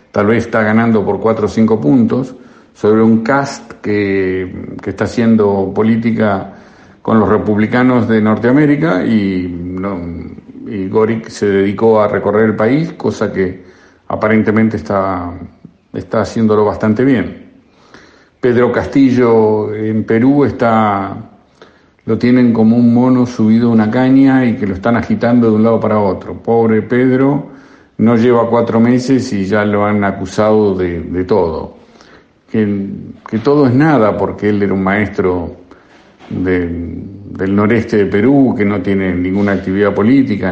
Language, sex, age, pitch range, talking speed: Spanish, male, 50-69, 100-115 Hz, 145 wpm